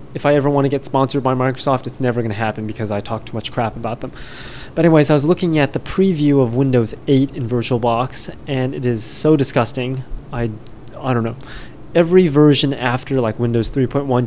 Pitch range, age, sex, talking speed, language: 120-140 Hz, 20-39, male, 210 wpm, English